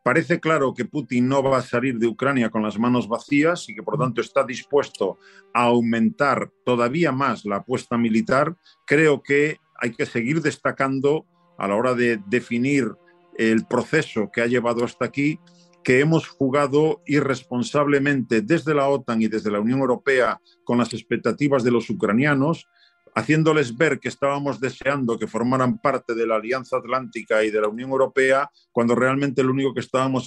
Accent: Spanish